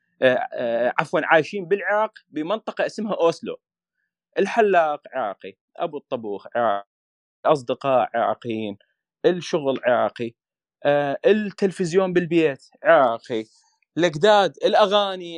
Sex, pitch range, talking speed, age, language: male, 125-195 Hz, 80 wpm, 30-49, Arabic